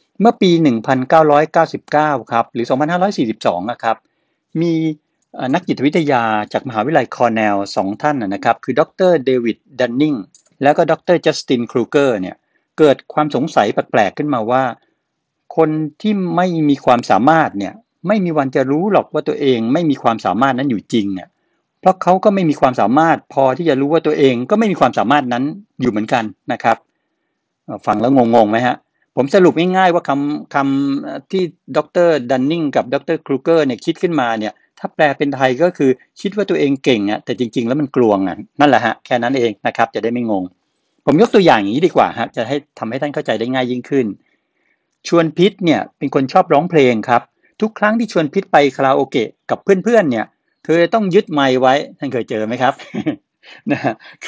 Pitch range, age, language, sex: 125-170 Hz, 60-79, Thai, male